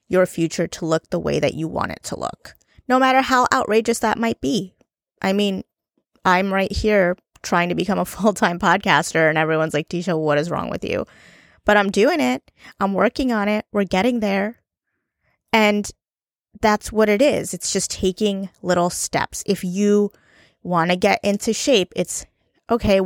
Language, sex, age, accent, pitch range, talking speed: English, female, 20-39, American, 180-235 Hz, 180 wpm